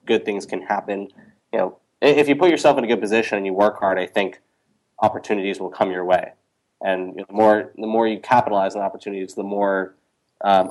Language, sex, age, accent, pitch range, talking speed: English, male, 20-39, American, 95-110 Hz, 220 wpm